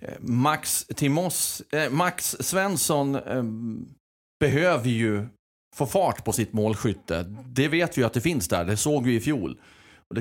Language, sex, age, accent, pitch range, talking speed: Swedish, male, 30-49, native, 105-140 Hz, 165 wpm